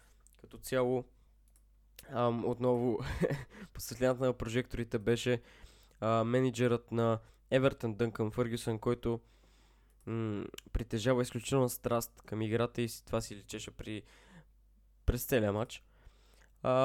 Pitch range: 115-130 Hz